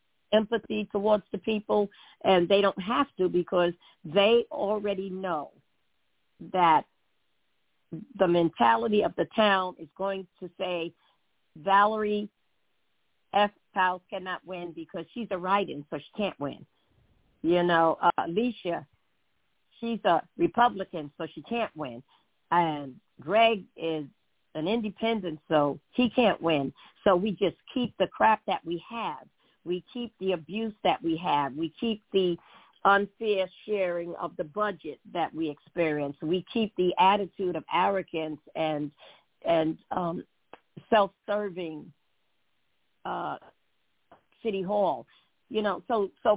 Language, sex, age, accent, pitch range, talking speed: English, female, 50-69, American, 170-215 Hz, 130 wpm